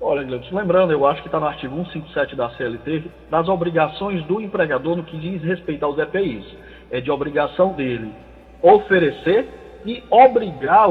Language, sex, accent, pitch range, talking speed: Portuguese, male, Brazilian, 150-205 Hz, 155 wpm